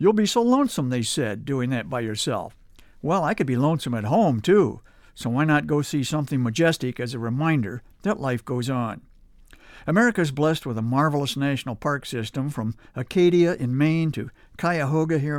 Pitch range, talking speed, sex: 120-160 Hz, 185 wpm, male